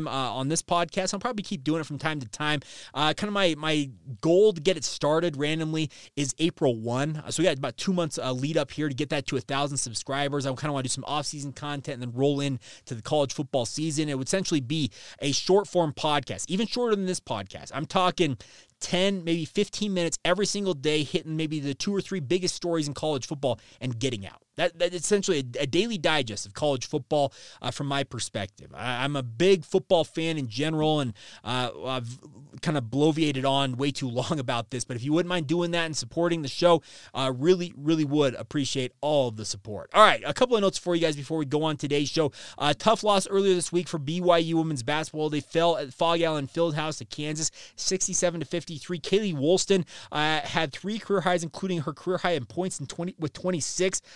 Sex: male